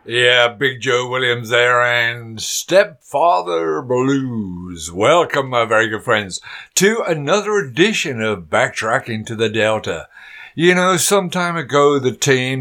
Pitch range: 110-145 Hz